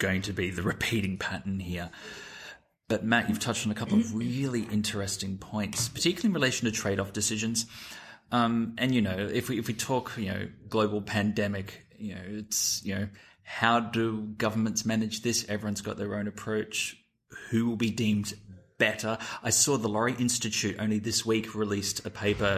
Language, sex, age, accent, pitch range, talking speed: English, male, 20-39, Australian, 100-115 Hz, 180 wpm